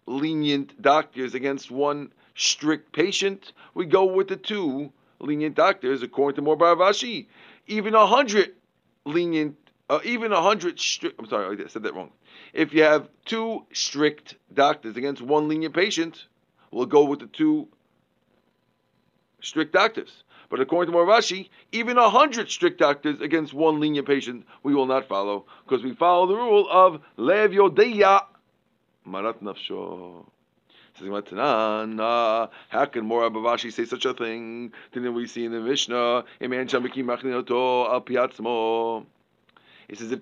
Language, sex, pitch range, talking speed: English, male, 130-190 Hz, 135 wpm